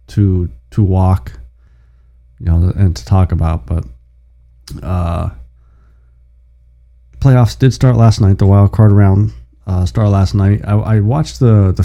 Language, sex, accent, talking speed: English, male, American, 145 wpm